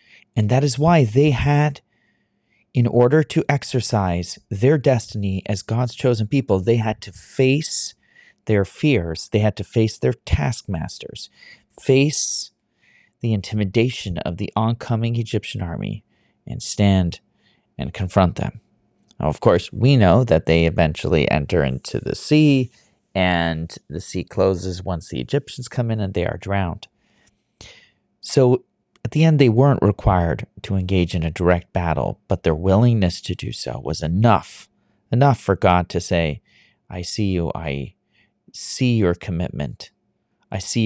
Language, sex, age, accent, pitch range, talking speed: English, male, 30-49, American, 90-120 Hz, 145 wpm